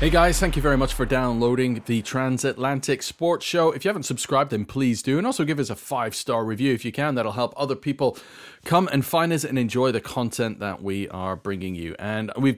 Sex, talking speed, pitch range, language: male, 230 wpm, 105-135 Hz, English